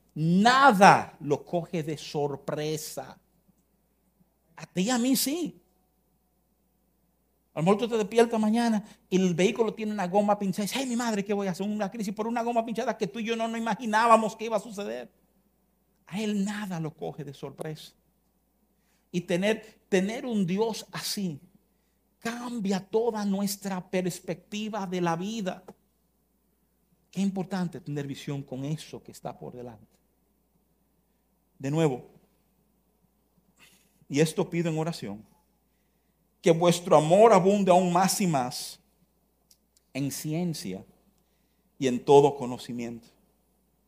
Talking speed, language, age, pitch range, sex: 140 wpm, Spanish, 50-69, 160-205 Hz, male